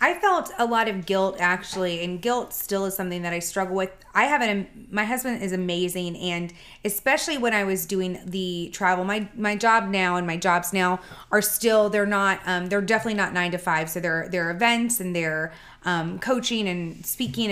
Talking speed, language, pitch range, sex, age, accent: 210 wpm, English, 185-215 Hz, female, 30-49, American